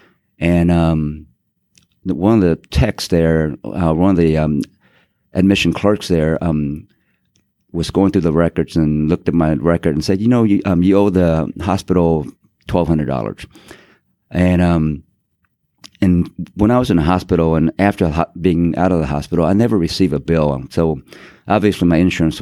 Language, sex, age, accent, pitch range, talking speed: English, male, 50-69, American, 80-90 Hz, 170 wpm